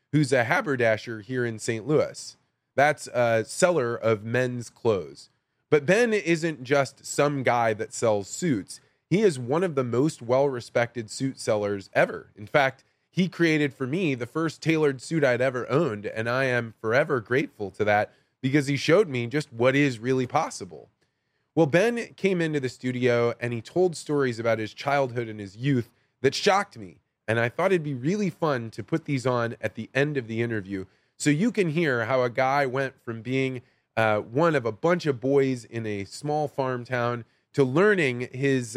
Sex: male